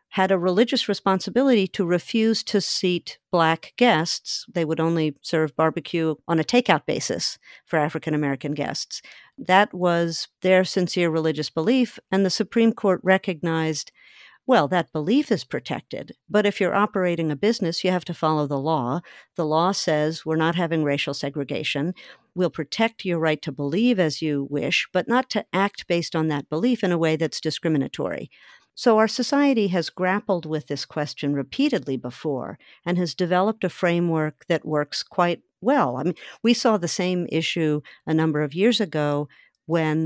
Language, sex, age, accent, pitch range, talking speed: English, female, 50-69, American, 155-190 Hz, 170 wpm